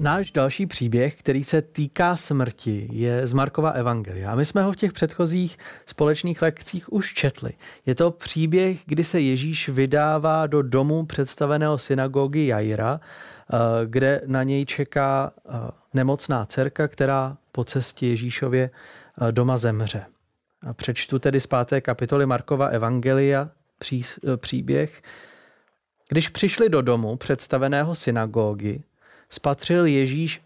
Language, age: Czech, 30-49